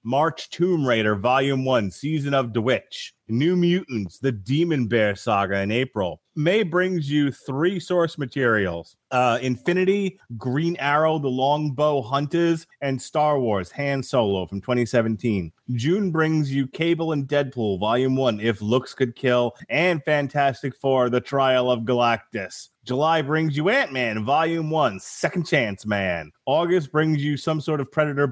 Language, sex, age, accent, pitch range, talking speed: English, male, 30-49, American, 115-155 Hz, 155 wpm